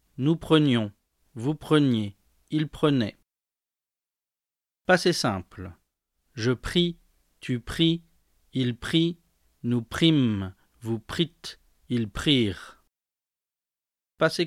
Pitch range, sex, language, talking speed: 90-150 Hz, male, French, 85 wpm